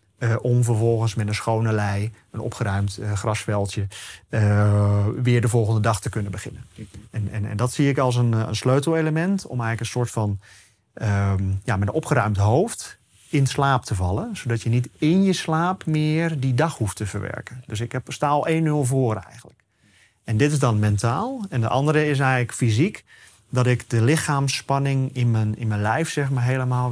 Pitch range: 105-135 Hz